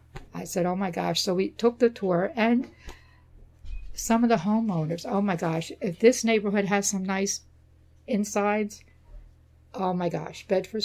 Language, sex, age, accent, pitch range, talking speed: English, female, 60-79, American, 170-210 Hz, 160 wpm